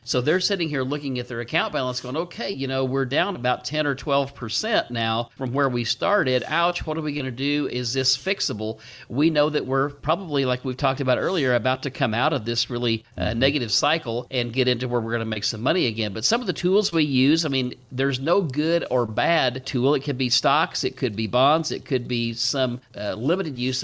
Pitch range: 120-145 Hz